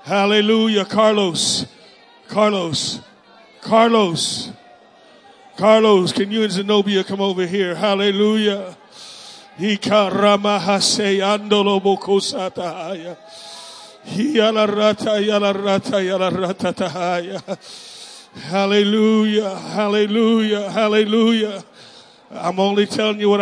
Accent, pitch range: American, 190-210 Hz